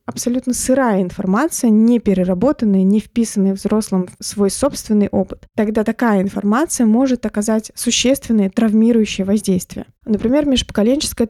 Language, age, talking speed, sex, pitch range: Russian, 20-39, 115 wpm, female, 205-235 Hz